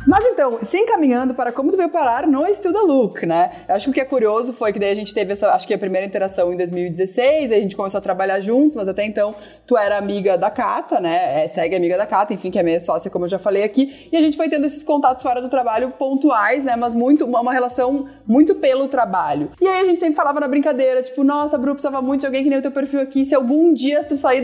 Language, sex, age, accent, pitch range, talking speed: Portuguese, female, 20-39, Brazilian, 215-285 Hz, 270 wpm